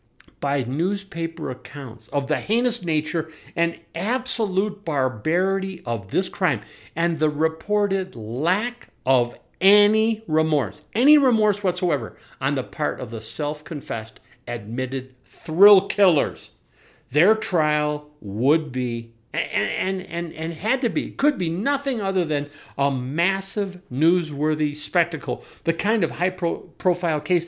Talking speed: 130 wpm